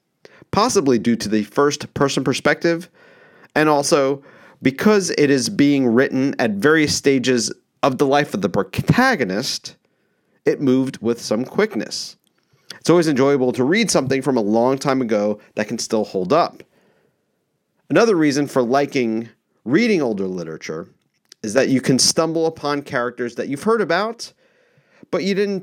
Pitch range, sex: 115-155 Hz, male